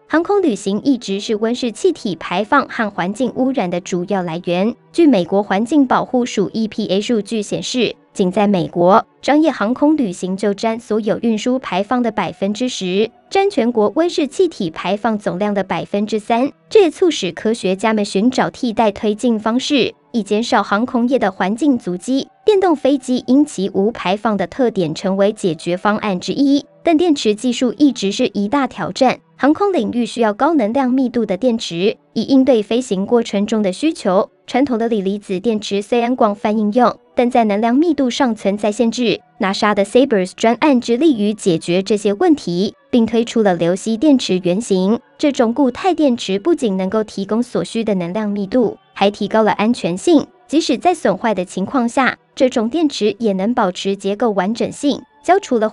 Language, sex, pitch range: Chinese, male, 200-260 Hz